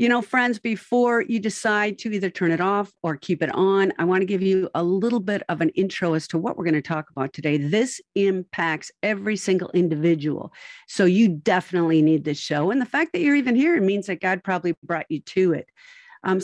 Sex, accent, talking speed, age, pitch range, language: female, American, 230 wpm, 50-69, 170-240 Hz, English